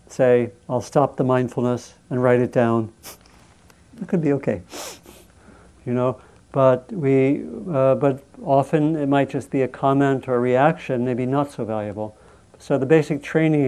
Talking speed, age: 160 wpm, 60-79